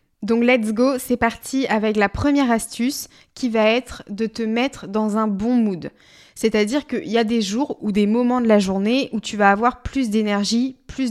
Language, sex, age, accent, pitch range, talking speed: French, female, 20-39, French, 215-255 Hz, 205 wpm